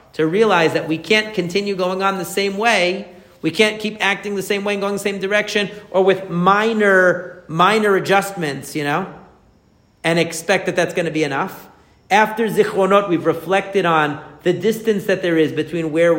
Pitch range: 150-190 Hz